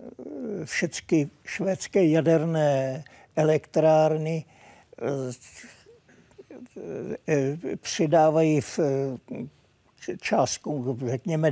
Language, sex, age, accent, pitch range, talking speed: Czech, male, 60-79, native, 145-175 Hz, 50 wpm